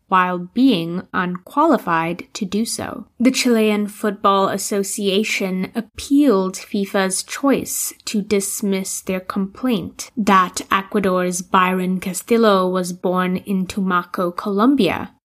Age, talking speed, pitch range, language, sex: 20-39, 100 wpm, 185-220 Hz, English, female